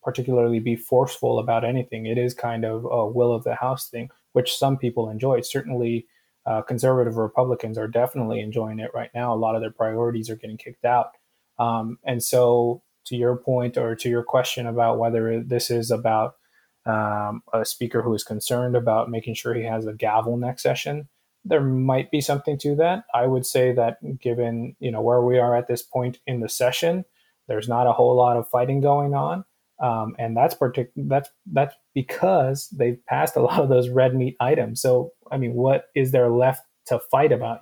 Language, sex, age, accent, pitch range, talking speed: English, male, 20-39, American, 115-130 Hz, 200 wpm